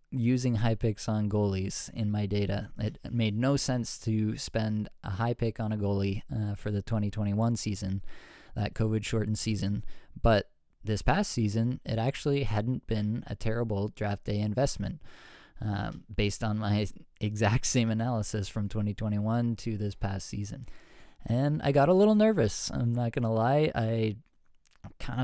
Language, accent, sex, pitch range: English, American, male, 105-125 Hz